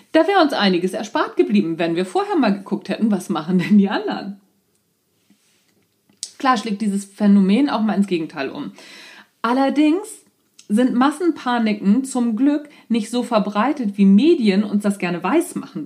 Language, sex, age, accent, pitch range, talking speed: German, female, 40-59, German, 185-245 Hz, 155 wpm